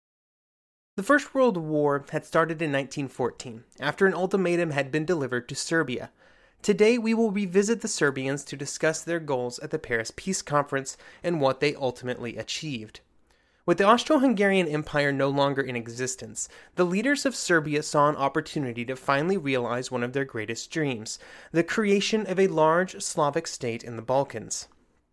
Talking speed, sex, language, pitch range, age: 165 wpm, male, English, 140-185 Hz, 30-49